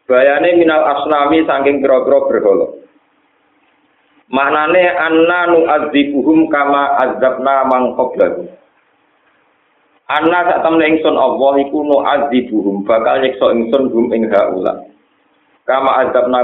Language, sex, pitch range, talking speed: Indonesian, male, 115-150 Hz, 100 wpm